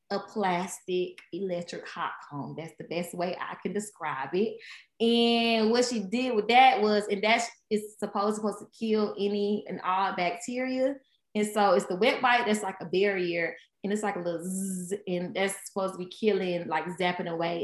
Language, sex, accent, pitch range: English, female, American, 180-220 Hz